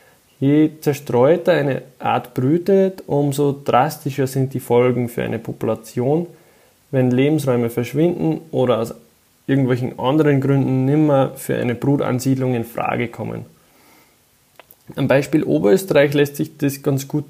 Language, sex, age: German, male, 20-39